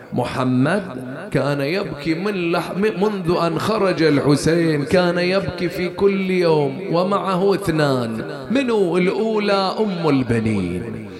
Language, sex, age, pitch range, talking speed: English, male, 30-49, 170-200 Hz, 105 wpm